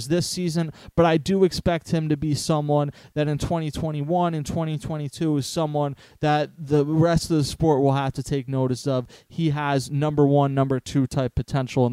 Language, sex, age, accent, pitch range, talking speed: English, male, 30-49, American, 145-175 Hz, 190 wpm